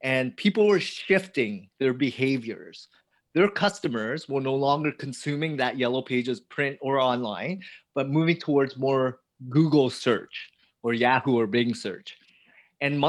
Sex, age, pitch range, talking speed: male, 30-49, 130-165 Hz, 140 wpm